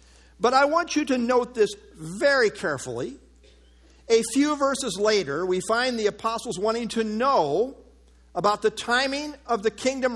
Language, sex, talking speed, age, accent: English, male, 155 wpm, 50-69, American